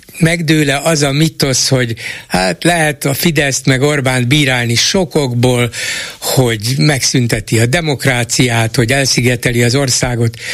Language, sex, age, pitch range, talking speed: Hungarian, male, 60-79, 115-145 Hz, 120 wpm